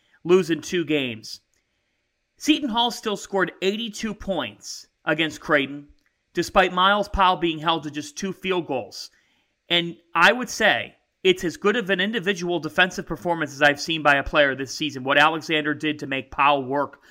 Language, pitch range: English, 160-205 Hz